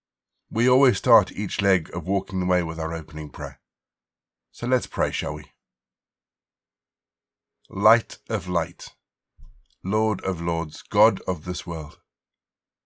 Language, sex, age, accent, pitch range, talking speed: English, male, 60-79, British, 85-105 Hz, 125 wpm